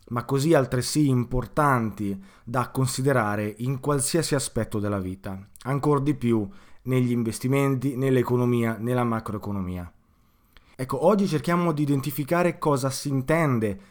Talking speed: 115 wpm